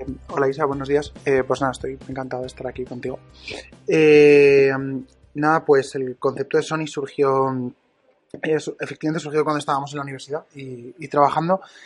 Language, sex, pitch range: Spanish, male, 140-165 Hz